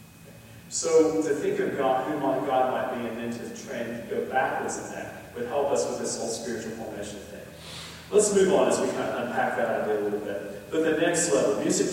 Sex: male